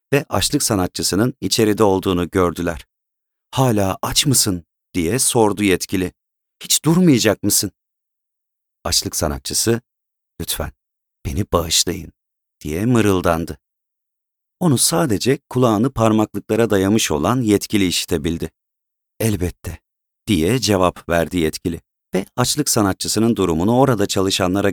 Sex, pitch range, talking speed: male, 90-115 Hz, 100 wpm